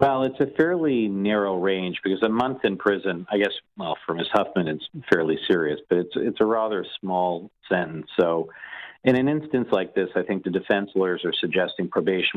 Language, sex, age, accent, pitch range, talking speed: English, male, 50-69, American, 85-105 Hz, 200 wpm